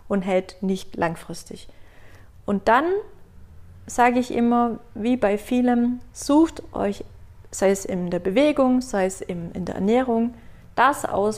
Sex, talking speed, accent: female, 135 wpm, German